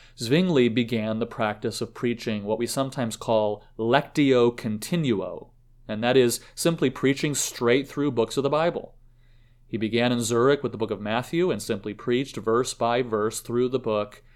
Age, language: 30-49, English